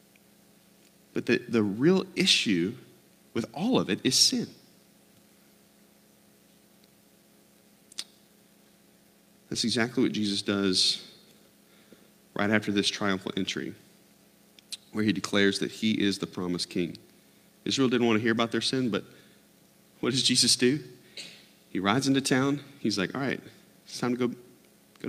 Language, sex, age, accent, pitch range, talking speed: English, male, 40-59, American, 95-135 Hz, 135 wpm